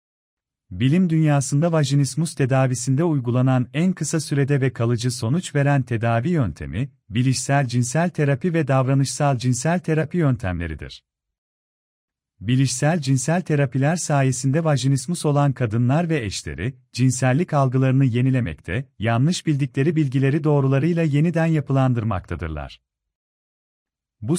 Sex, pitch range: male, 115-150 Hz